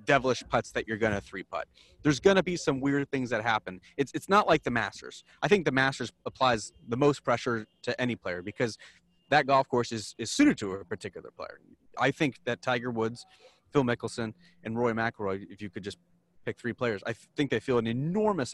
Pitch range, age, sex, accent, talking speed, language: 110-135 Hz, 30-49, male, American, 220 wpm, English